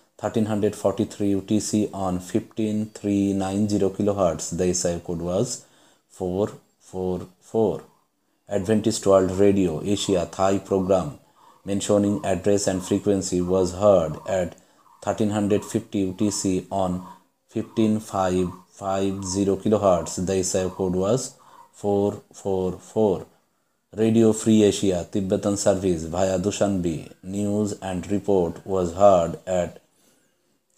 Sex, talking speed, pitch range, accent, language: male, 90 wpm, 95-105 Hz, Indian, English